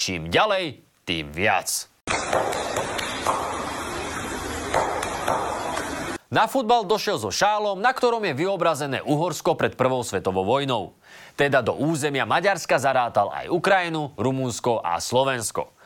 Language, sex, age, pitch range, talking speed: Slovak, male, 30-49, 120-190 Hz, 105 wpm